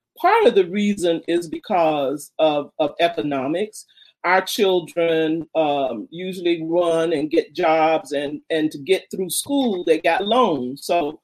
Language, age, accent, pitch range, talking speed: English, 40-59, American, 155-235 Hz, 145 wpm